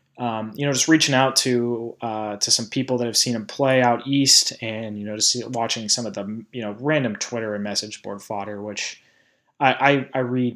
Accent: American